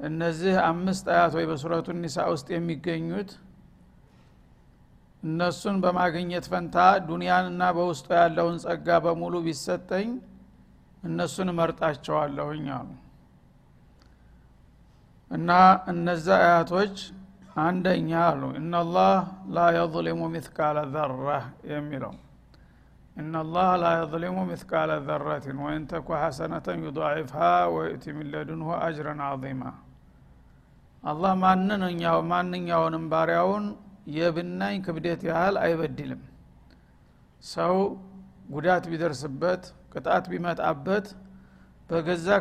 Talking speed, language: 90 wpm, Amharic